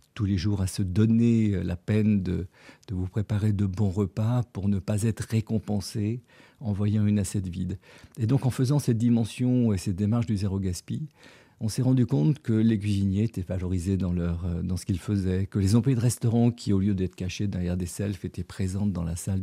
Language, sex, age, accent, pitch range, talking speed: French, male, 50-69, French, 95-115 Hz, 215 wpm